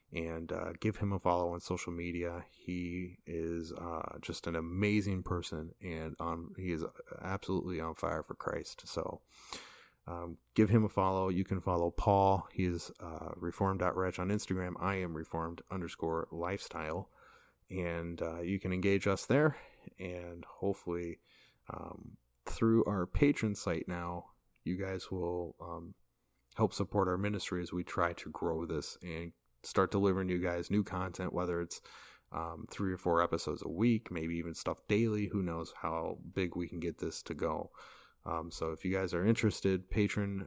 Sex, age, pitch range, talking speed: male, 30-49, 85-95 Hz, 170 wpm